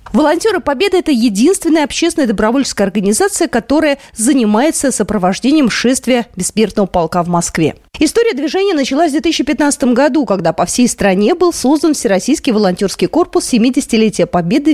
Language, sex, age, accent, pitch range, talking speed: Russian, female, 30-49, native, 205-310 Hz, 130 wpm